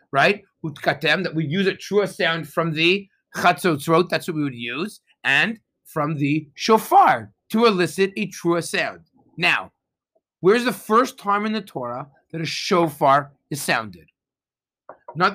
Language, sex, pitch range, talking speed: English, male, 155-205 Hz, 155 wpm